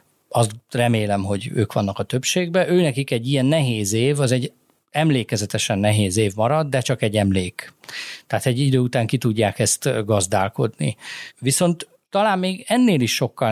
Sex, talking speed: male, 160 wpm